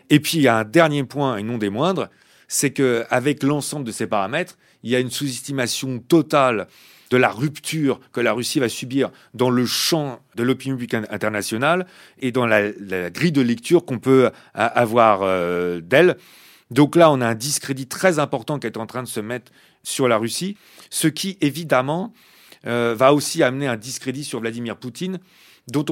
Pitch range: 120-150 Hz